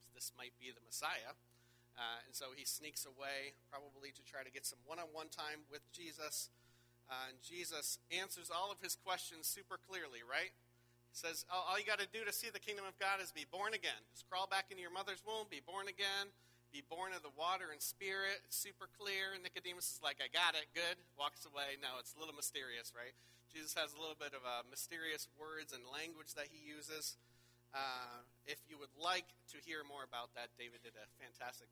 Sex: male